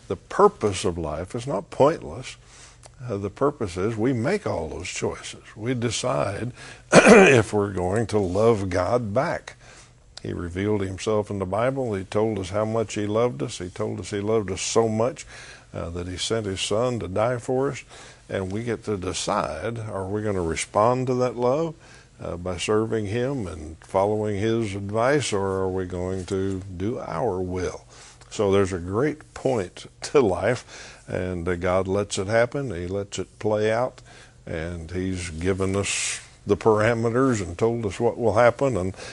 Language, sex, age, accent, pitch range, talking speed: English, male, 60-79, American, 95-115 Hz, 180 wpm